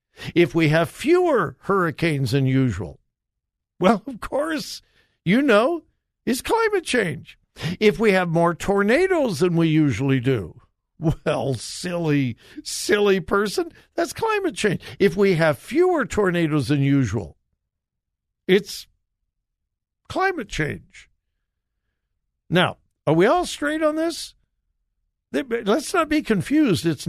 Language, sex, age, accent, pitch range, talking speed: English, male, 60-79, American, 125-200 Hz, 115 wpm